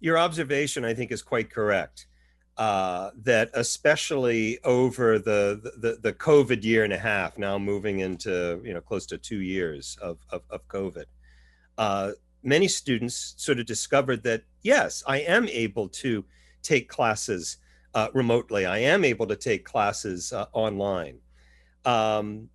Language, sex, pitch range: English, male, 90-130 Hz